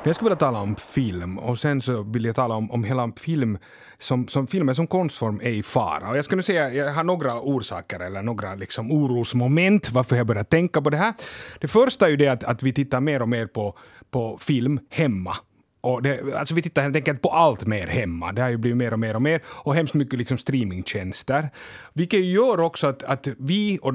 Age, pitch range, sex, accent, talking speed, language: 30-49, 120-170 Hz, male, Finnish, 235 wpm, Swedish